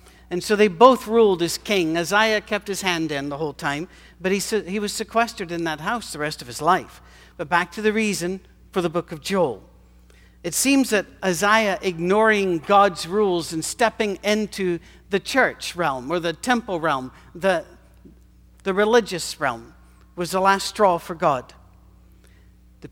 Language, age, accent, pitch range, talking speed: English, 60-79, American, 155-215 Hz, 170 wpm